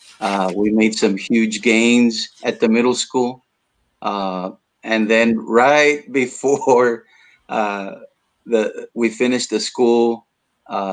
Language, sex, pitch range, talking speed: English, male, 105-120 Hz, 120 wpm